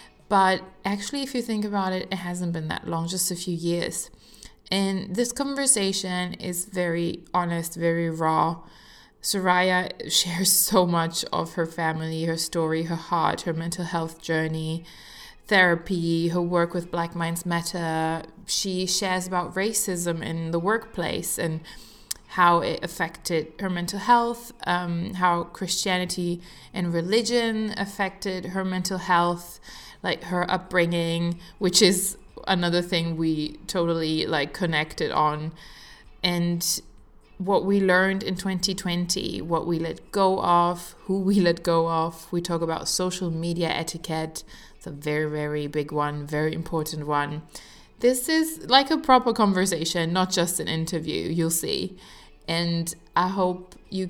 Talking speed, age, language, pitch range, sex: 140 wpm, 20-39, English, 165-190 Hz, female